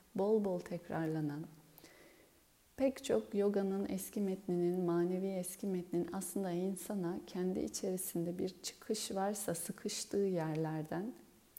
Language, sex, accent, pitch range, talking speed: Turkish, female, native, 175-210 Hz, 105 wpm